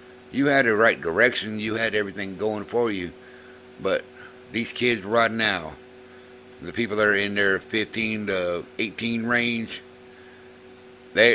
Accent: American